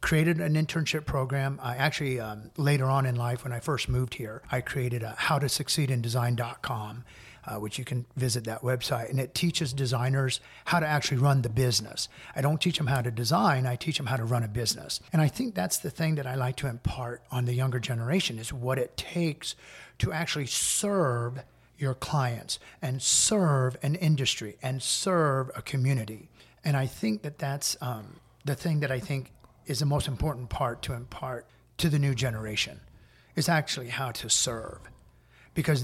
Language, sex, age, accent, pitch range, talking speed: English, male, 50-69, American, 120-155 Hz, 185 wpm